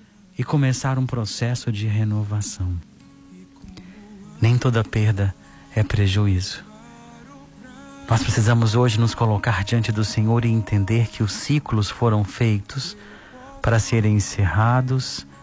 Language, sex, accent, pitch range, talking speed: Portuguese, male, Brazilian, 105-125 Hz, 115 wpm